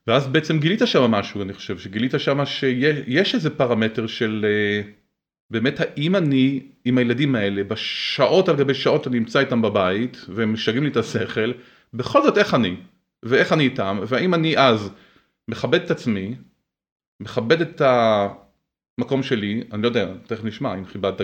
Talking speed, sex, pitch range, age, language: 160 wpm, male, 110-135 Hz, 30-49, Hebrew